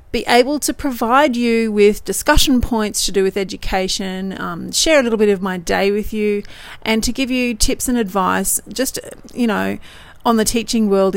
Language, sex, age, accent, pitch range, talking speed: English, female, 40-59, Australian, 195-245 Hz, 195 wpm